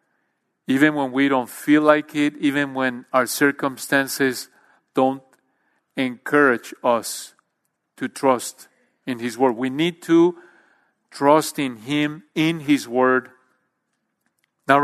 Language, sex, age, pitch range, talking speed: English, male, 40-59, 135-165 Hz, 115 wpm